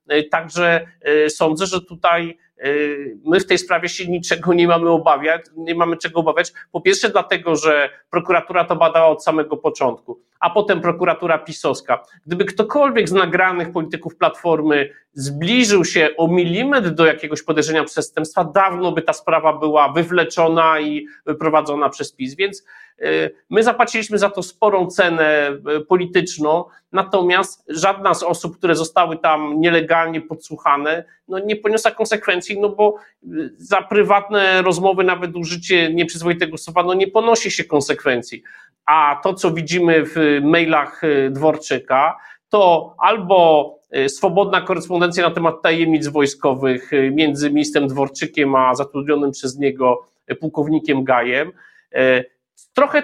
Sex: male